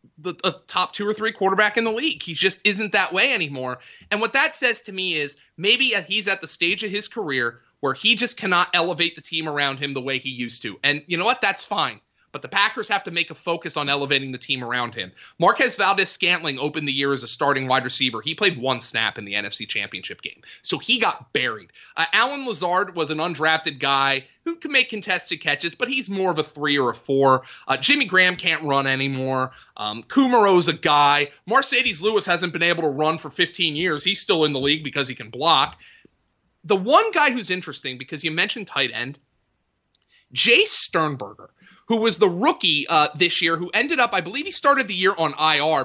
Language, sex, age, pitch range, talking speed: English, male, 30-49, 140-215 Hz, 220 wpm